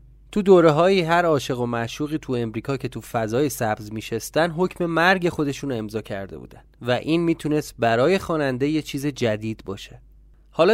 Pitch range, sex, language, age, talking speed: 115-150 Hz, male, Persian, 30-49, 160 wpm